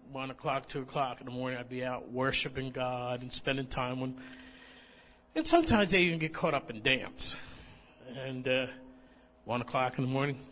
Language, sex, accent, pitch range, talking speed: English, male, American, 130-175 Hz, 185 wpm